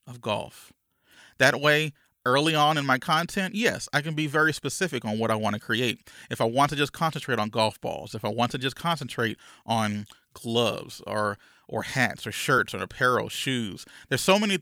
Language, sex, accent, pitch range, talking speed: English, male, American, 110-145 Hz, 200 wpm